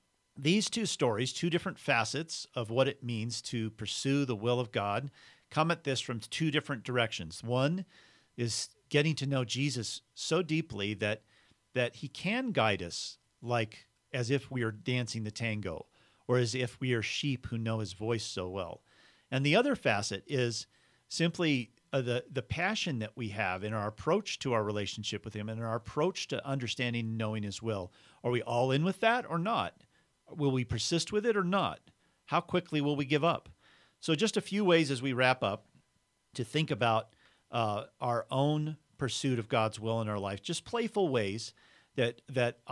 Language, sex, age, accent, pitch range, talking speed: English, male, 40-59, American, 110-140 Hz, 190 wpm